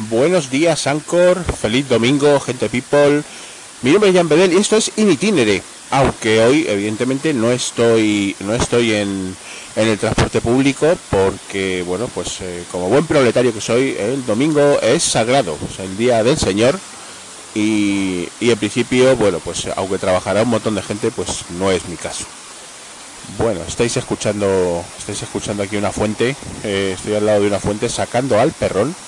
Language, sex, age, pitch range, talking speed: English, male, 30-49, 100-125 Hz, 165 wpm